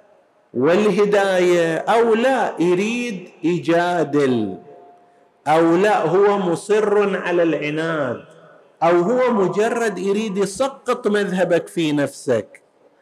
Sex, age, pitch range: male, 50-69, 160-225 Hz